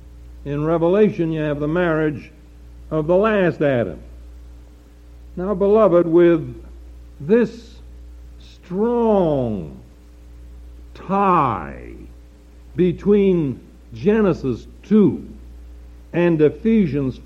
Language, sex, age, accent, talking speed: English, male, 60-79, American, 75 wpm